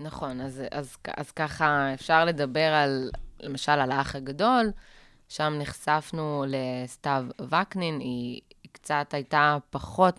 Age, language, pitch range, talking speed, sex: 20-39, Hebrew, 135-155 Hz, 130 wpm, female